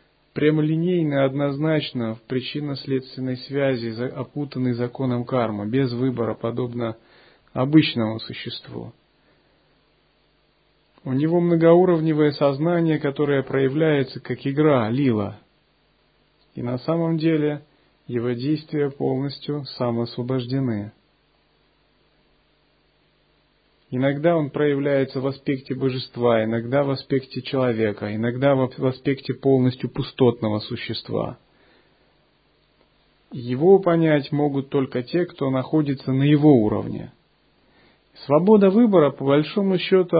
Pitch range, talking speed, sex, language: 125-155 Hz, 95 wpm, male, Russian